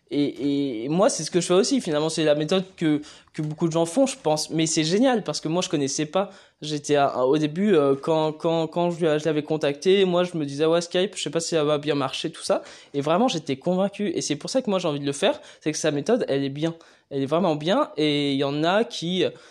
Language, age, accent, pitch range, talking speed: French, 20-39, French, 150-180 Hz, 275 wpm